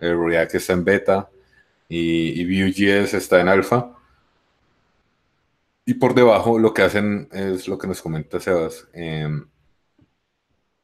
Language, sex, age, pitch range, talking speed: Spanish, male, 30-49, 85-105 Hz, 120 wpm